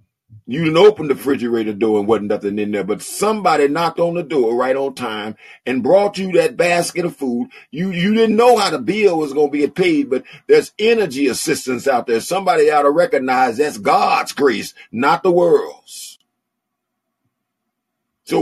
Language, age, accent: English, 40-59, American